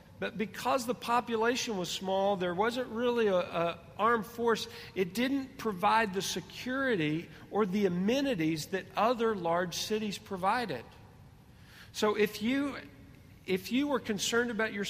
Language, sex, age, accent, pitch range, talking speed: English, male, 50-69, American, 150-210 Hz, 135 wpm